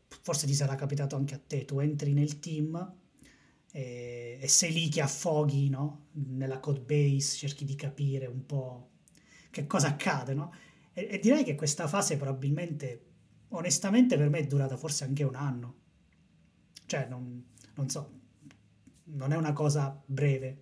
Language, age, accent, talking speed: Italian, 20-39, native, 160 wpm